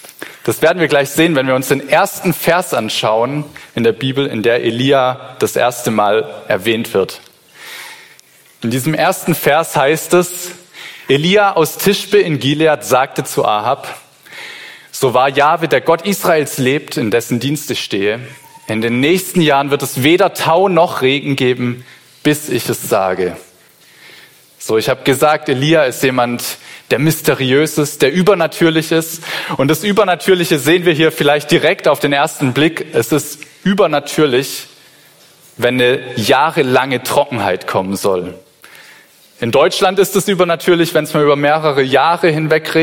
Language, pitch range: German, 130-165 Hz